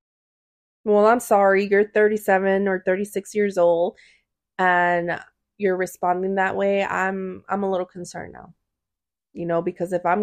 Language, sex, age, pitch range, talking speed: English, female, 20-39, 180-225 Hz, 145 wpm